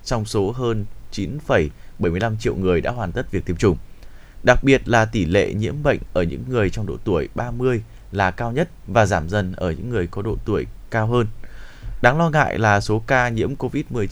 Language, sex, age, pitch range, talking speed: Vietnamese, male, 20-39, 100-130 Hz, 205 wpm